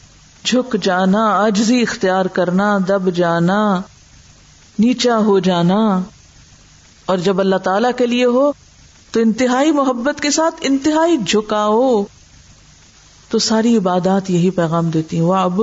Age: 50-69